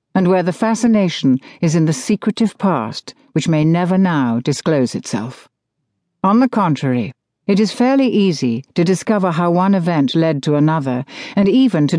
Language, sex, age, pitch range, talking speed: English, female, 60-79, 155-210 Hz, 165 wpm